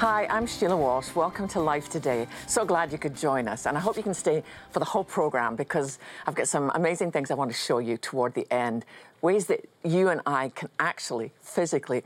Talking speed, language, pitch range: 230 wpm, English, 135-190 Hz